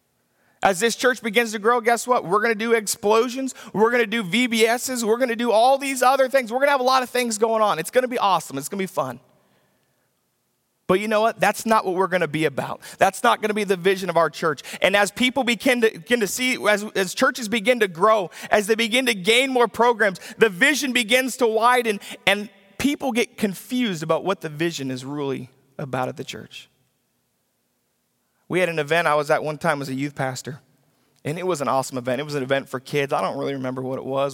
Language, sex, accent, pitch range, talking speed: English, male, American, 150-230 Hz, 245 wpm